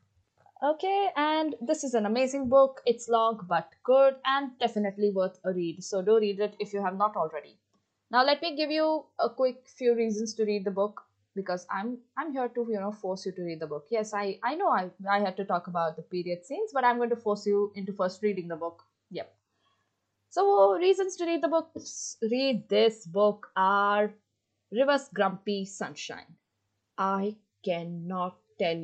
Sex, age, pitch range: female, 20-39, 180-235 Hz